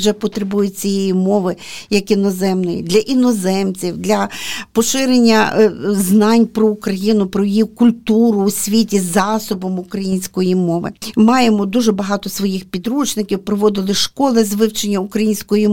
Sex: female